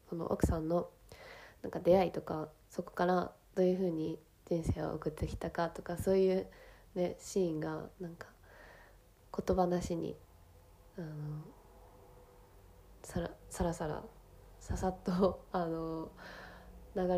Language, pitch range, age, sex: Japanese, 155-185 Hz, 20-39, female